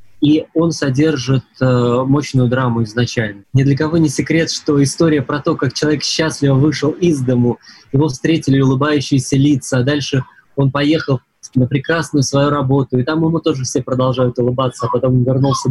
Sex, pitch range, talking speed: male, 125-150 Hz, 170 wpm